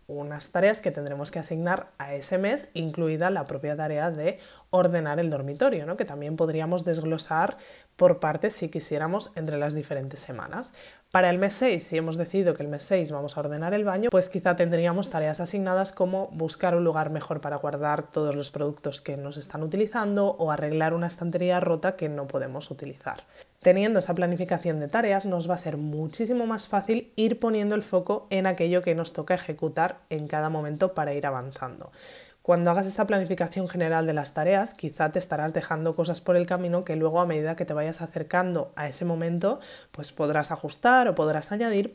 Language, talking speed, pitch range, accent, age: Spanish, 190 wpm, 155-190 Hz, Spanish, 20-39